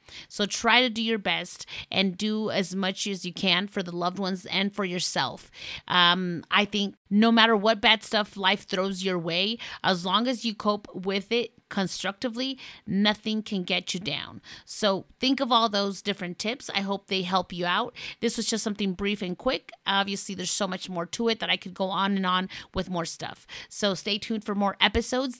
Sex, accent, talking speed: female, American, 210 wpm